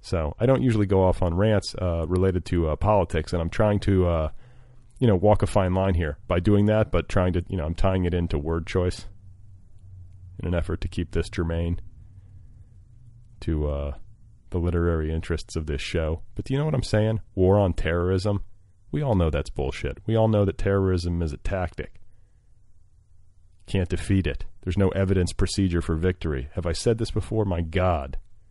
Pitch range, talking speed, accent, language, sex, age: 85-105 Hz, 195 wpm, American, English, male, 30-49